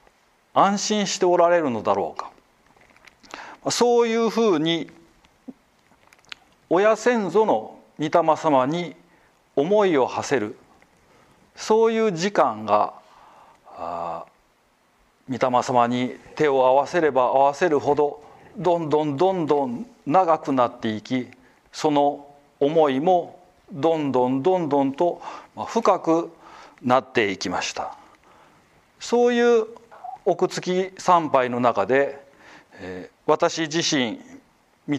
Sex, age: male, 40-59